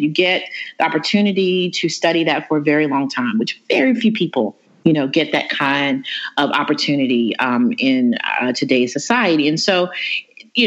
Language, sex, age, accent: English, female, 30-49, American